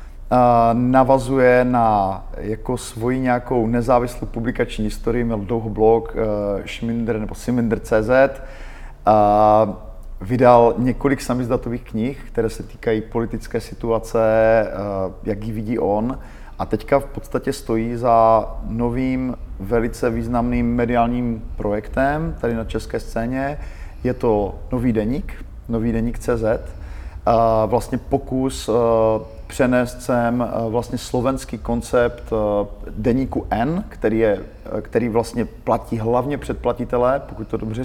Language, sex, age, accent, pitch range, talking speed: Czech, male, 30-49, native, 110-125 Hz, 115 wpm